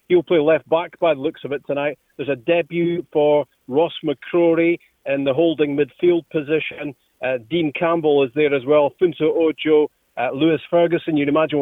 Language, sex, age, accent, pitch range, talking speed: English, male, 40-59, British, 140-165 Hz, 180 wpm